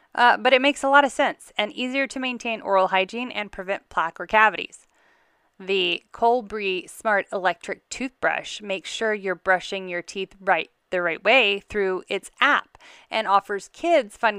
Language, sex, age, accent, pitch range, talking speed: English, female, 30-49, American, 185-245 Hz, 170 wpm